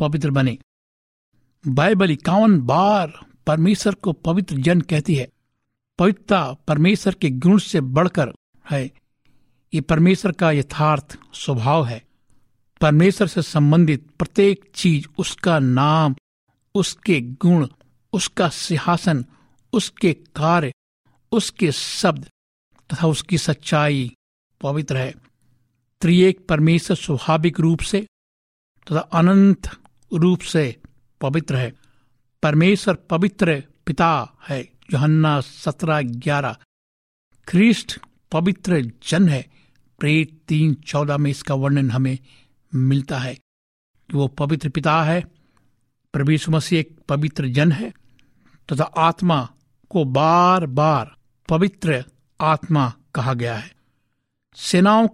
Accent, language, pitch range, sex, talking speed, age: native, Hindi, 130-170 Hz, male, 105 wpm, 60-79